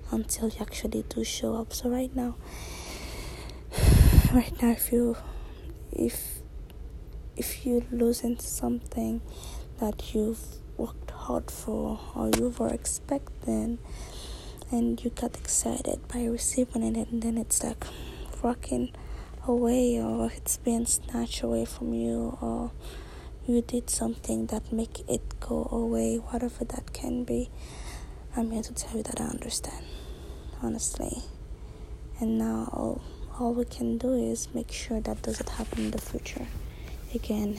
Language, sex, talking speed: English, female, 140 wpm